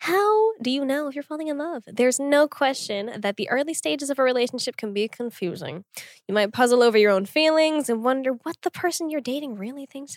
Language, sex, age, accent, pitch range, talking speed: English, female, 10-29, American, 215-315 Hz, 225 wpm